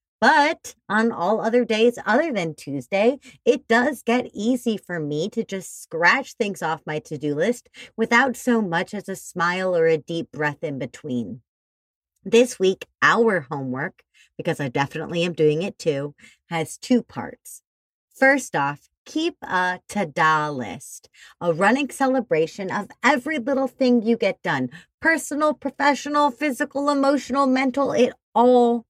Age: 30-49